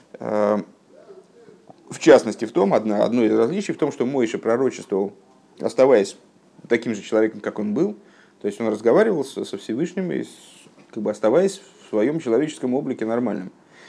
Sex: male